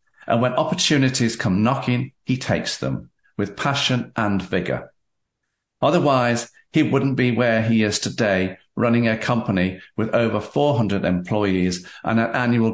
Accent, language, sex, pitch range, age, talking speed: British, English, male, 95-120 Hz, 50-69, 140 wpm